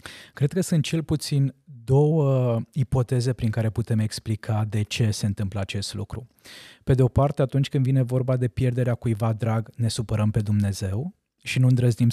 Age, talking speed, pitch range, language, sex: 20-39, 180 wpm, 115-135 Hz, Romanian, male